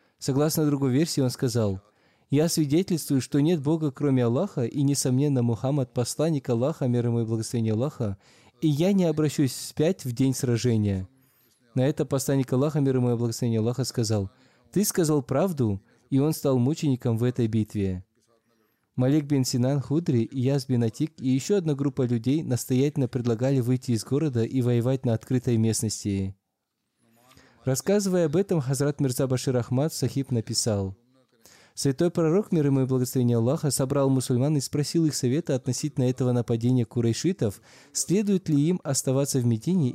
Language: Russian